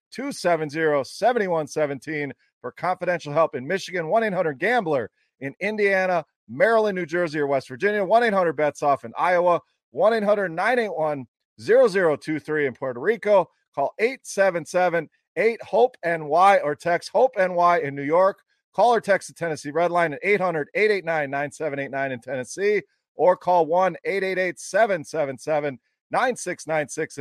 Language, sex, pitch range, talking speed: English, male, 150-195 Hz, 95 wpm